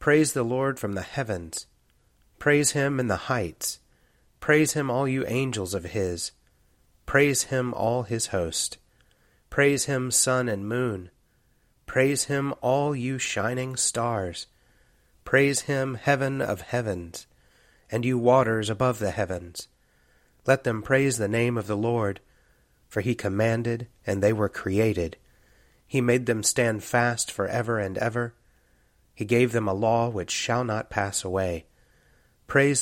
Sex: male